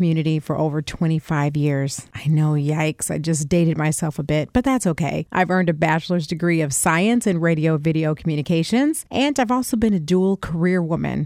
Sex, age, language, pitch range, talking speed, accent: female, 40-59, English, 155-200 Hz, 190 wpm, American